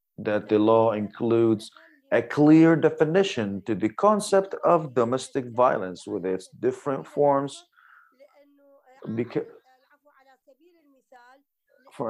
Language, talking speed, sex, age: English, 95 wpm, male, 30-49